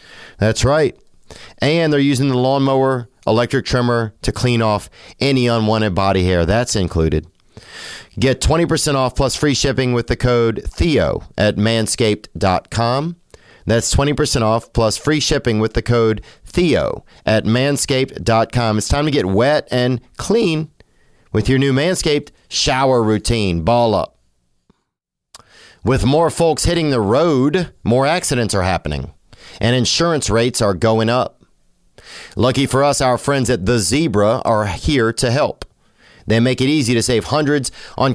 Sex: male